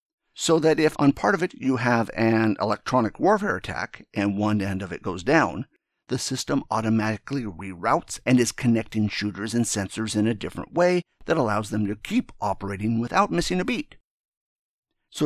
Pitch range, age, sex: 105-140 Hz, 50-69, male